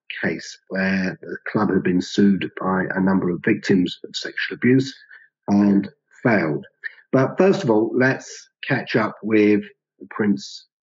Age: 40-59